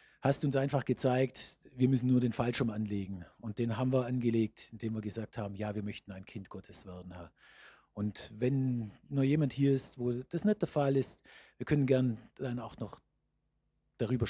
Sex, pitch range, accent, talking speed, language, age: male, 115-155 Hz, German, 190 wpm, German, 40-59